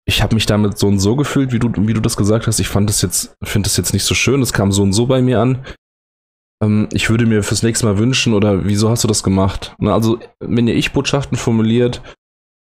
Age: 20-39